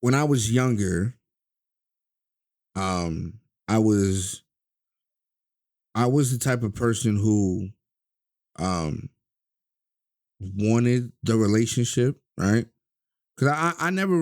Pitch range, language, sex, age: 95-120 Hz, English, male, 30-49